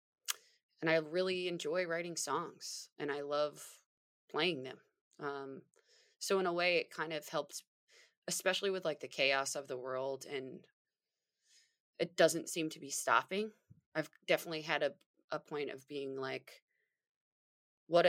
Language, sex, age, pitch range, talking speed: English, female, 20-39, 145-200 Hz, 150 wpm